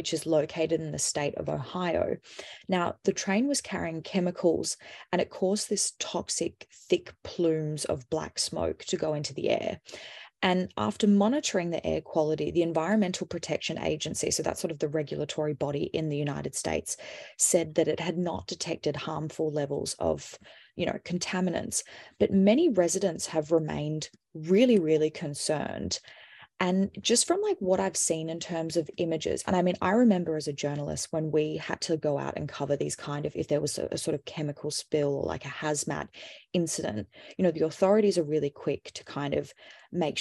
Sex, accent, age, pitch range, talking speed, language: female, Australian, 20-39, 155-185 Hz, 185 wpm, English